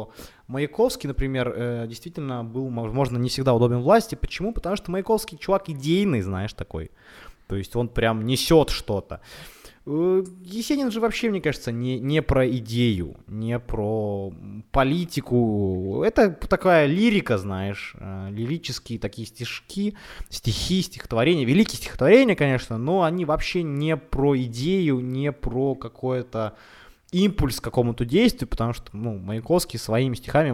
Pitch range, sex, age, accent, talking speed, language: 115-170 Hz, male, 20-39, native, 130 wpm, Ukrainian